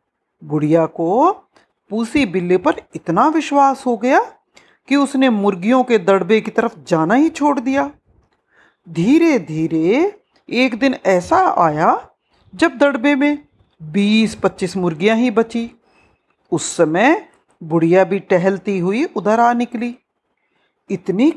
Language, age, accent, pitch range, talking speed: Hindi, 50-69, native, 190-290 Hz, 125 wpm